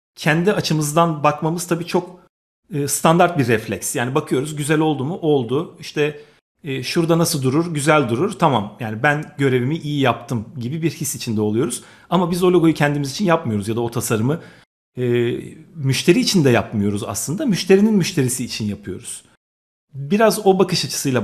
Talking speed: 160 wpm